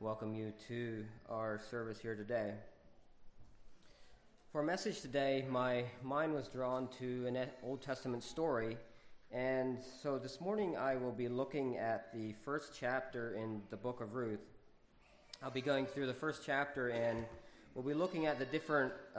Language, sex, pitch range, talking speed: English, male, 115-140 Hz, 160 wpm